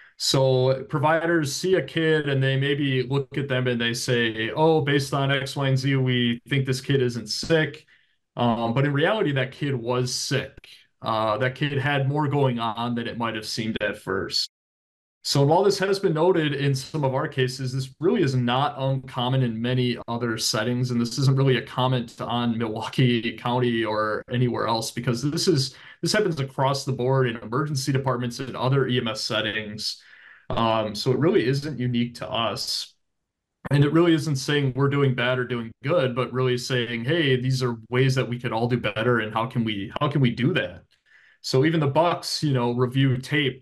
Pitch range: 120-140 Hz